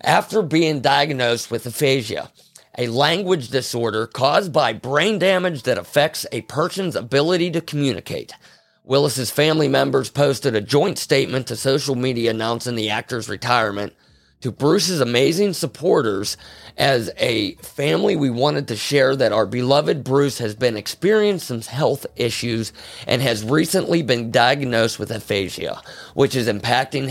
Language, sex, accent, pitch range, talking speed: English, male, American, 115-150 Hz, 140 wpm